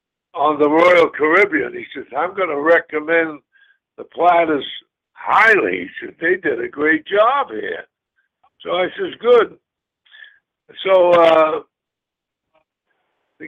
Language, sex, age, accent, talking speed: English, male, 60-79, American, 125 wpm